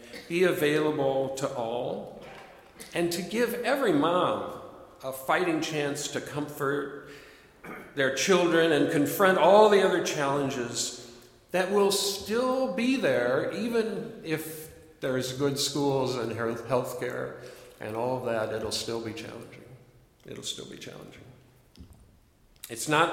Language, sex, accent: English, male, American